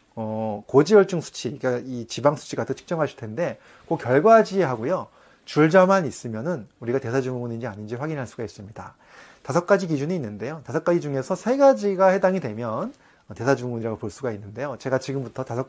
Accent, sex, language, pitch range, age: native, male, Korean, 120-185 Hz, 30-49